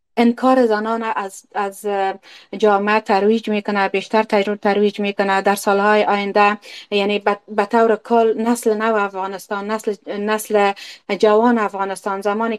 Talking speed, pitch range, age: 125 wpm, 200-225 Hz, 30-49